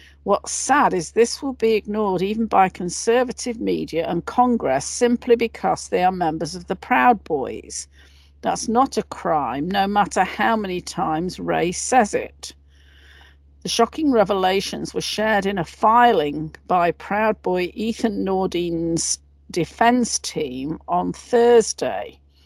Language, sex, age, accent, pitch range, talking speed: English, female, 50-69, British, 165-235 Hz, 135 wpm